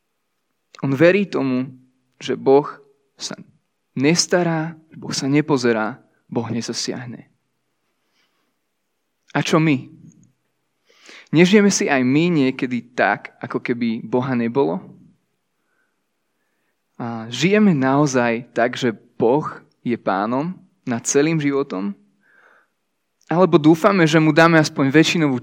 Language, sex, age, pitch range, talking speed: Slovak, male, 20-39, 125-160 Hz, 100 wpm